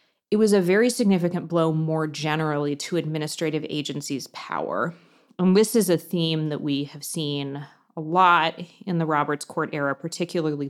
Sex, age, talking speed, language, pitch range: female, 30-49, 165 wpm, English, 150-180 Hz